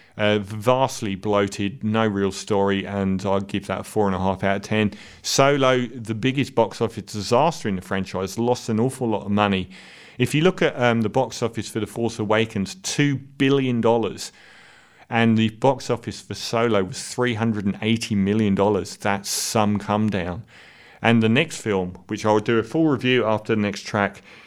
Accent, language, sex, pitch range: British, English, male, 105-125 Hz